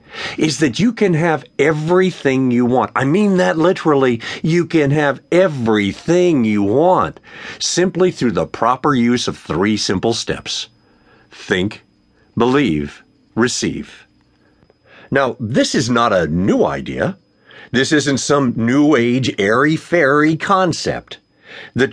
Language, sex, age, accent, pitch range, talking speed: English, male, 50-69, American, 115-170 Hz, 125 wpm